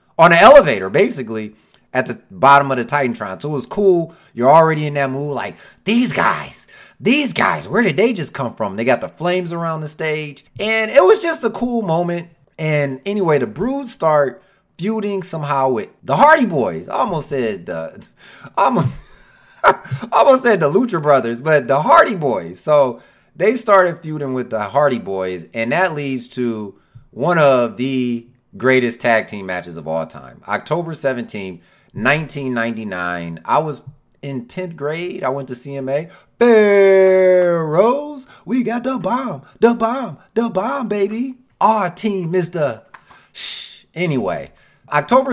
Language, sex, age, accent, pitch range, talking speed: English, male, 30-49, American, 120-190 Hz, 160 wpm